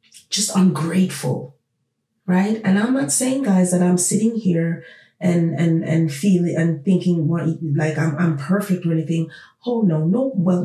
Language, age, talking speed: English, 30-49, 165 wpm